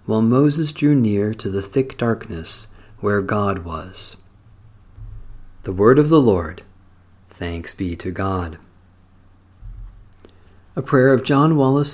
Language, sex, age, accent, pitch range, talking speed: English, male, 50-69, American, 95-135 Hz, 125 wpm